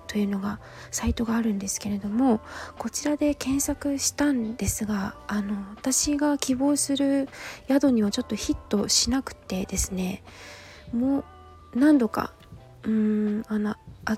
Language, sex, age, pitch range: Japanese, female, 20-39, 205-250 Hz